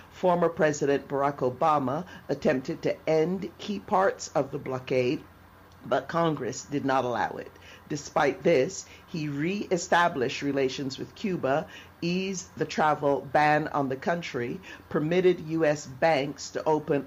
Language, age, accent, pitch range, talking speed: English, 50-69, American, 135-165 Hz, 130 wpm